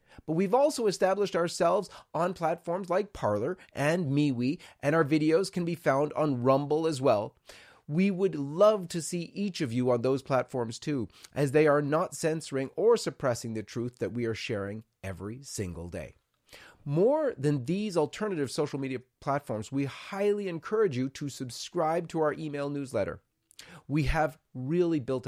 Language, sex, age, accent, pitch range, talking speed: English, male, 30-49, American, 115-155 Hz, 165 wpm